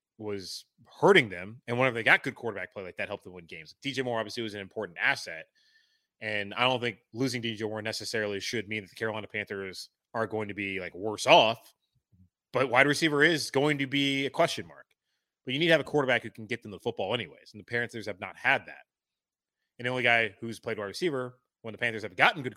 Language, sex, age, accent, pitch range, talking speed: English, male, 30-49, American, 105-135 Hz, 235 wpm